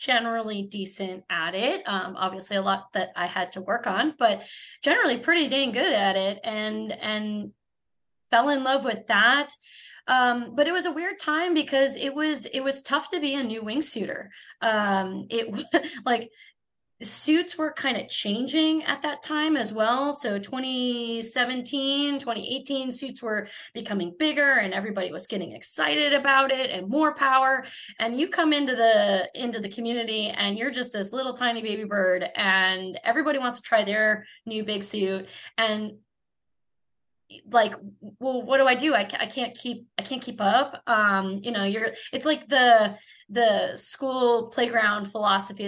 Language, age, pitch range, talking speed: English, 20-39, 205-265 Hz, 170 wpm